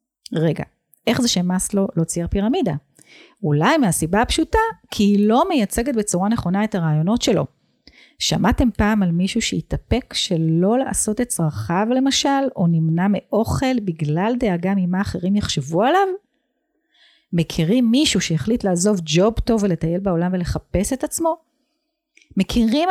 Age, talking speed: 40-59, 135 wpm